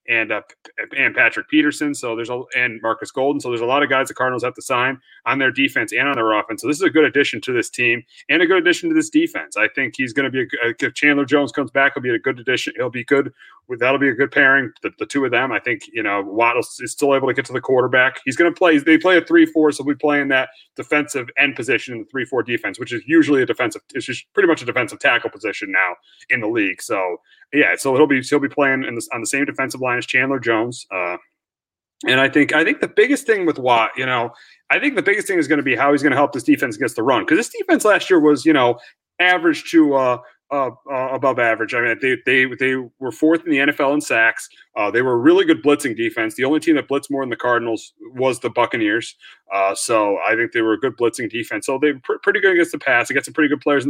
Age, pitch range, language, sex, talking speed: 30-49, 130-180 Hz, English, male, 275 wpm